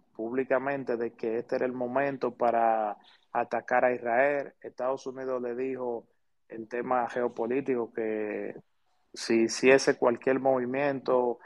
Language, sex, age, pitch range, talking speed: Spanish, male, 30-49, 125-145 Hz, 125 wpm